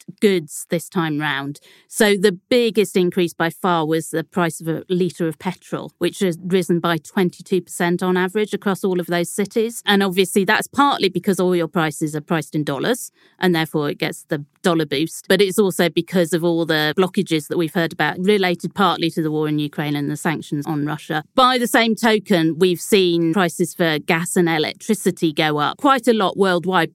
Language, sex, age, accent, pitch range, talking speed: English, female, 40-59, British, 160-195 Hz, 200 wpm